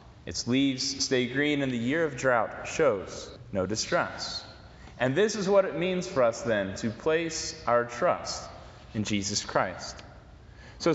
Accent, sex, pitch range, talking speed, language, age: American, male, 120-165 Hz, 160 wpm, English, 30-49